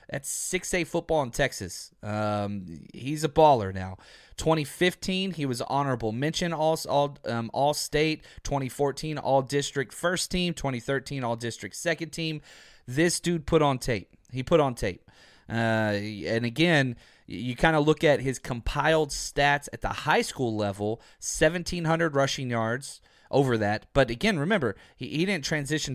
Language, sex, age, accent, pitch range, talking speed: English, male, 30-49, American, 115-155 Hz, 155 wpm